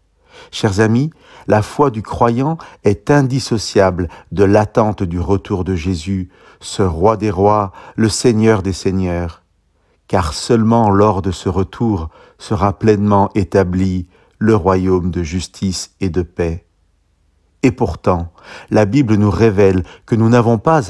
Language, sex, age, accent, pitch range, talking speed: French, male, 50-69, French, 90-110 Hz, 140 wpm